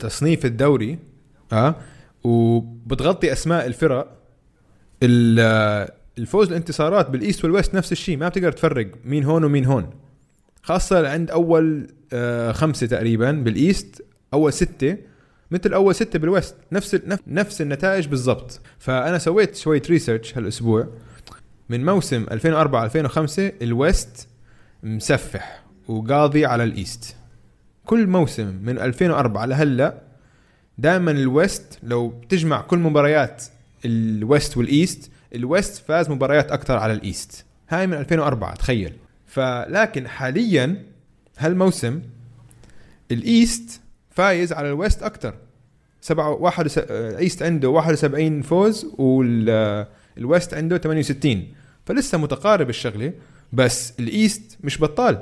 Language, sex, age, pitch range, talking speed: Arabic, male, 20-39, 120-165 Hz, 105 wpm